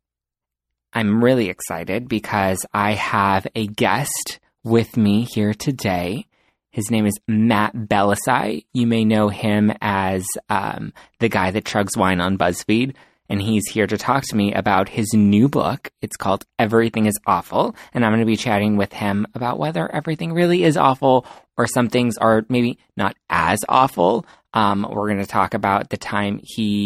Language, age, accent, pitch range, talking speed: English, 20-39, American, 100-120 Hz, 170 wpm